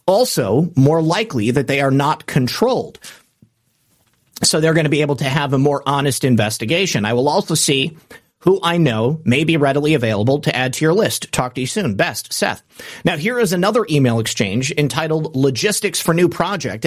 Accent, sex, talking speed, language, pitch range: American, male, 190 wpm, English, 140-185 Hz